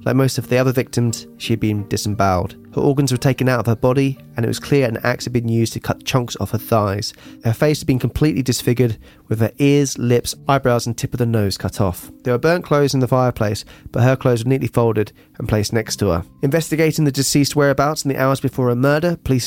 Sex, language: male, English